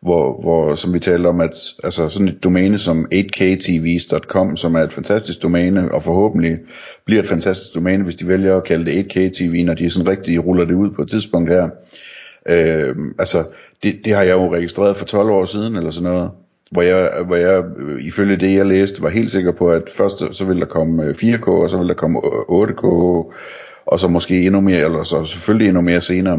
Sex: male